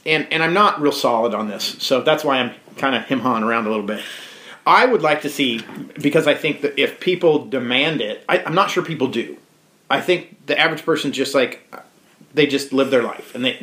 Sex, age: male, 40-59